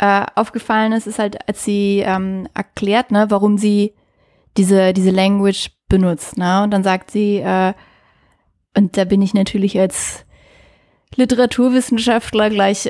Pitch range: 195-225 Hz